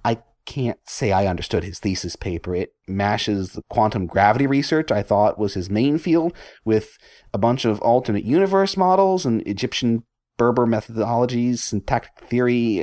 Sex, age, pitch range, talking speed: male, 30-49, 100-135 Hz, 150 wpm